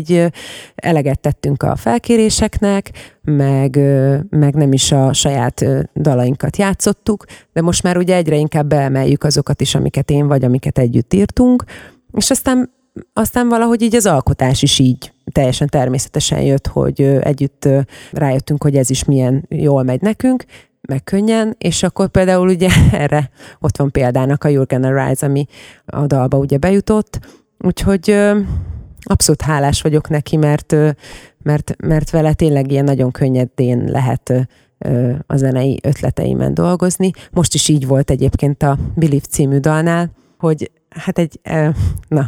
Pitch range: 135-170 Hz